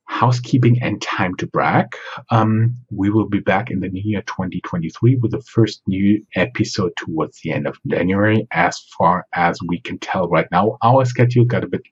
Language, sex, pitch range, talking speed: English, male, 95-120 Hz, 190 wpm